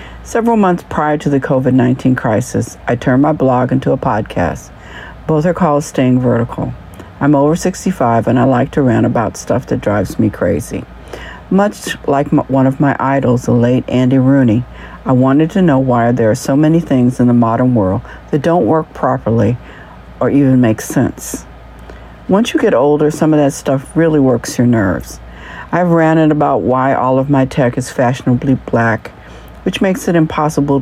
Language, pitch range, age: English, 120-150 Hz, 60-79